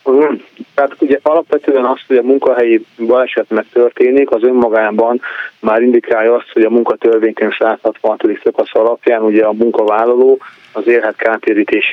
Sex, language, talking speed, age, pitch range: male, Hungarian, 135 wpm, 30-49, 110-135 Hz